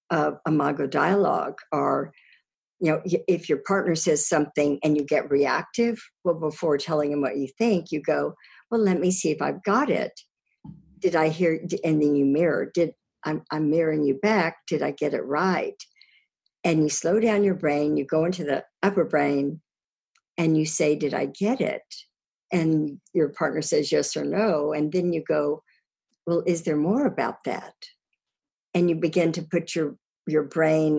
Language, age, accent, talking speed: English, 60-79, American, 185 wpm